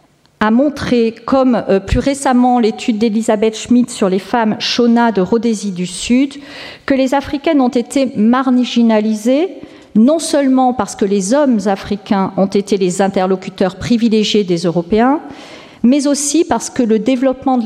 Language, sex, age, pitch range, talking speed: French, female, 40-59, 200-250 Hz, 145 wpm